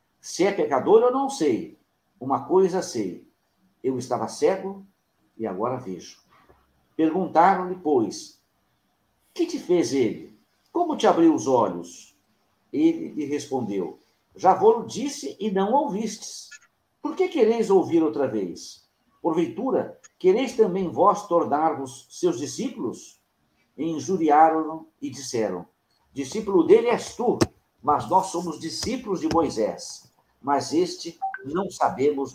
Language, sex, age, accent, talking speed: Portuguese, male, 60-79, Brazilian, 120 wpm